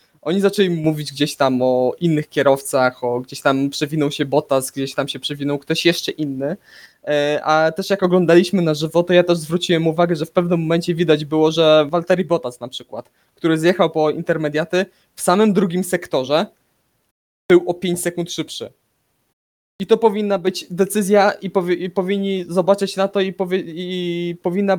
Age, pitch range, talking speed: 20-39, 155-185 Hz, 175 wpm